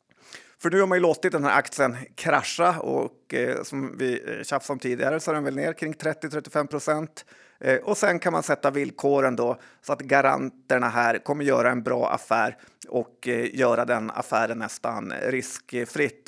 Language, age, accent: Swedish, 30-49, native